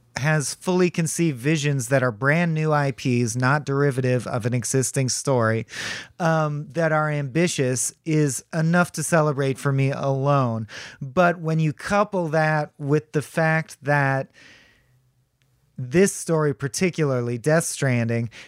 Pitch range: 125-155 Hz